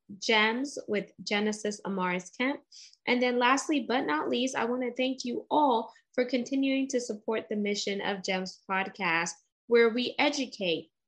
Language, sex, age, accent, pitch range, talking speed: English, female, 10-29, American, 195-250 Hz, 150 wpm